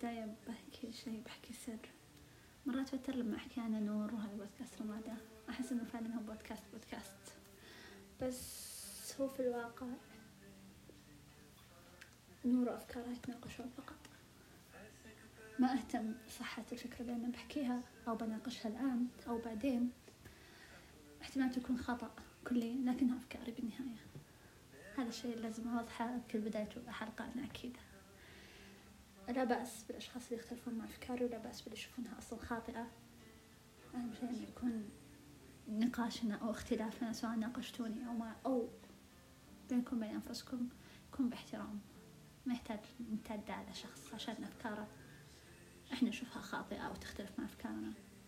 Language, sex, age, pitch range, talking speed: Arabic, female, 30-49, 225-250 Hz, 120 wpm